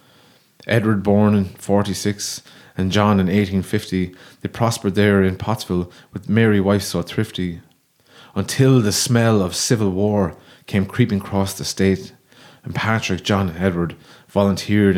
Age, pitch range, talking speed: 30-49, 95-110 Hz, 140 wpm